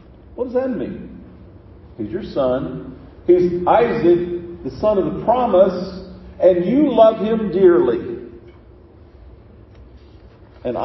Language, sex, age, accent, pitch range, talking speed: English, male, 50-69, American, 150-205 Hz, 110 wpm